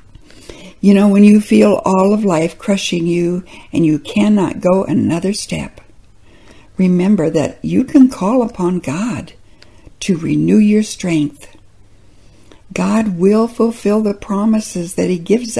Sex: female